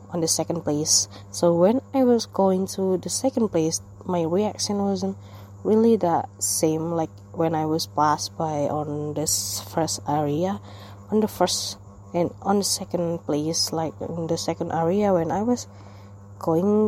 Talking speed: 165 wpm